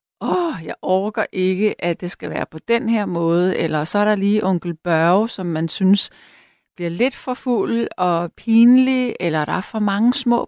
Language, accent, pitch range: Danish, native, 170-230 Hz